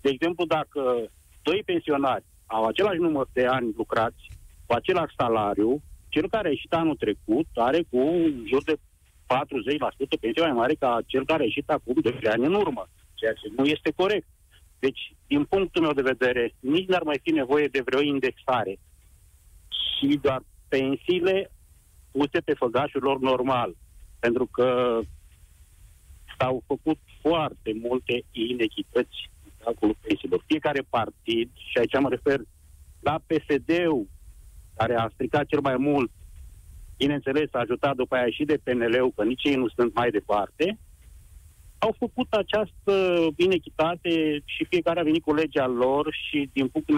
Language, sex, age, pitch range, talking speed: Romanian, male, 50-69, 100-160 Hz, 150 wpm